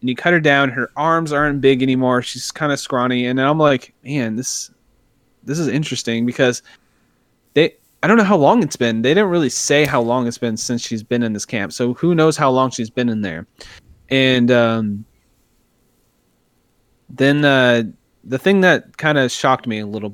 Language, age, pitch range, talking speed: English, 20-39, 120-145 Hz, 200 wpm